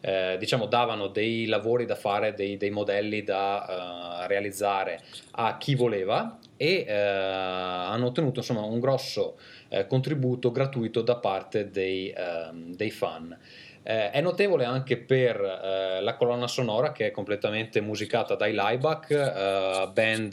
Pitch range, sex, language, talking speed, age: 100-120 Hz, male, Italian, 145 wpm, 20-39